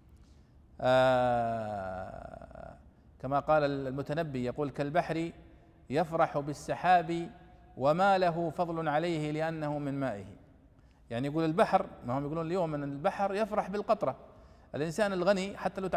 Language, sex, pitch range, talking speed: Arabic, male, 130-185 Hz, 110 wpm